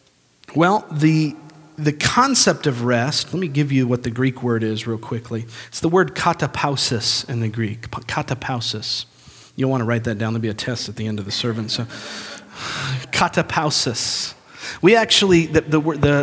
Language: English